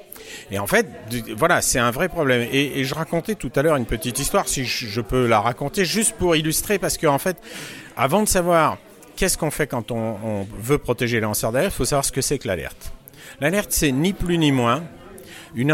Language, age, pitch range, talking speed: French, 50-69, 105-150 Hz, 230 wpm